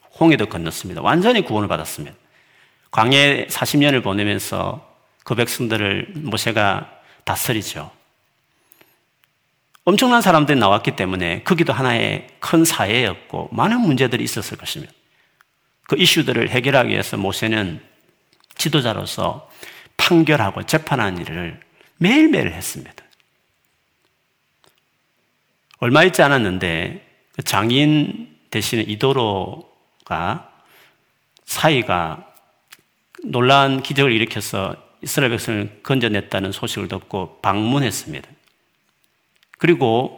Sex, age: male, 40-59